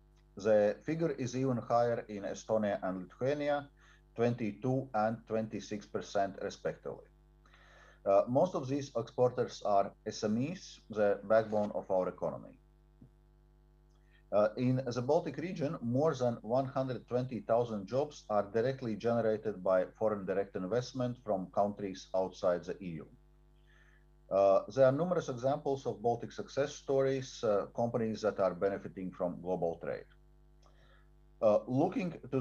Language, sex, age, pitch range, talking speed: English, male, 50-69, 105-135 Hz, 120 wpm